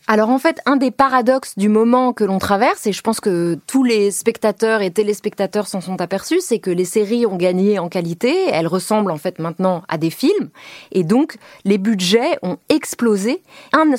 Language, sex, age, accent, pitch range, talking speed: French, female, 20-39, French, 185-245 Hz, 195 wpm